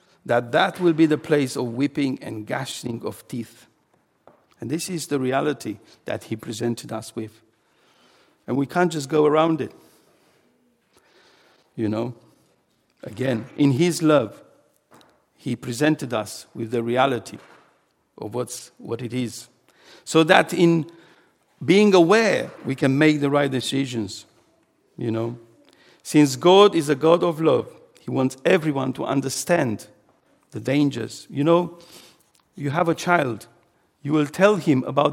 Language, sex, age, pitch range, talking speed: English, male, 60-79, 125-180 Hz, 145 wpm